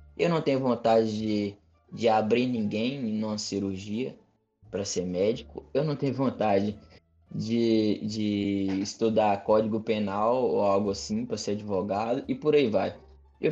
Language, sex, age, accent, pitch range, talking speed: Portuguese, male, 20-39, Brazilian, 105-140 Hz, 145 wpm